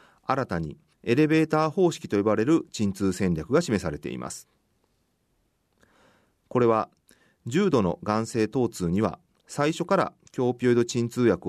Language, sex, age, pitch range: Japanese, male, 40-59, 100-140 Hz